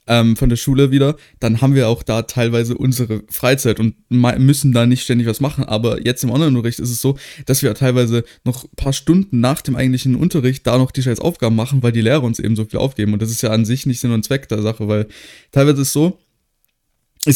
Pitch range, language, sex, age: 115-140 Hz, German, male, 20-39